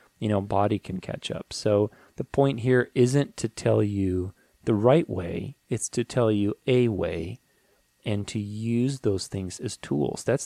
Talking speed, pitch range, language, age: 180 wpm, 95-120 Hz, English, 30-49